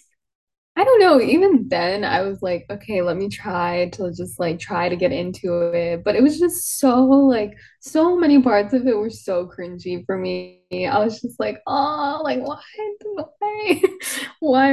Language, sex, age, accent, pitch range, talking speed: English, female, 10-29, American, 175-255 Hz, 185 wpm